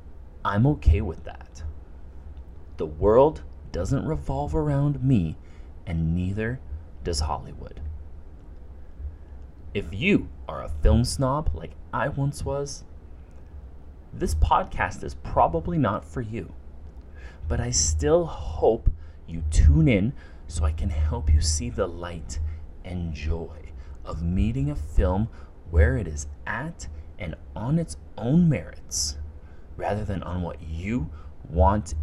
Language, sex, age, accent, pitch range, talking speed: English, male, 30-49, American, 75-85 Hz, 125 wpm